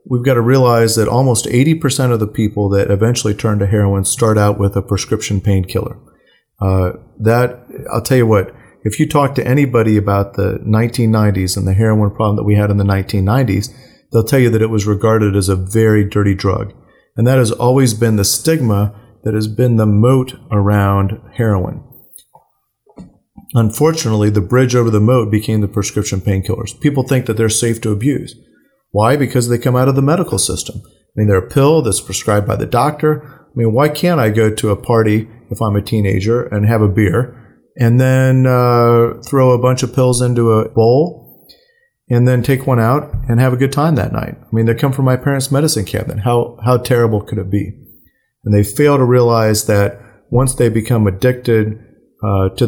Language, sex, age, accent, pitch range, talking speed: English, male, 40-59, American, 105-125 Hz, 195 wpm